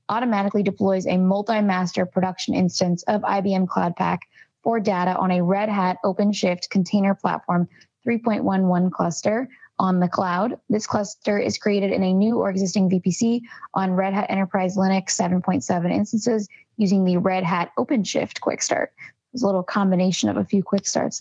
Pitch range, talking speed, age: 185-215 Hz, 160 wpm, 20-39